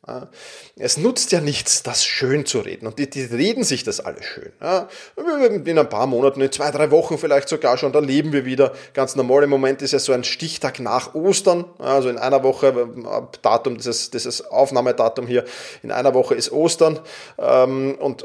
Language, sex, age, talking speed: German, male, 30-49, 195 wpm